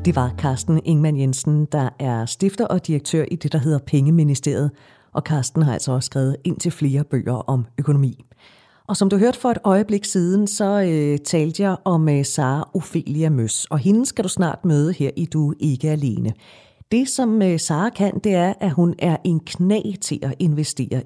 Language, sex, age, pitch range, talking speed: Danish, female, 40-59, 145-185 Hz, 200 wpm